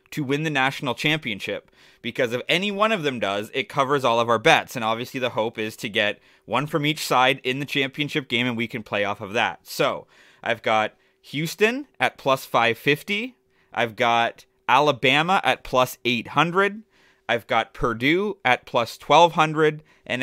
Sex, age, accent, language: male, 30-49, American, English